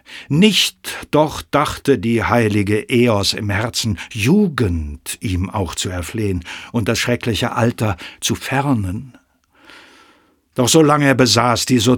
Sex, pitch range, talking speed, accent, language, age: male, 110-145 Hz, 125 wpm, German, German, 60-79